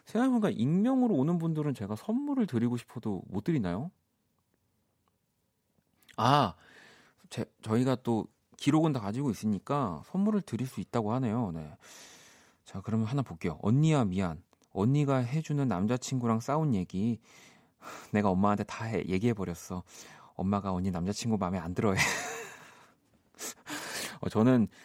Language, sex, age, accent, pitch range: Korean, male, 30-49, native, 95-140 Hz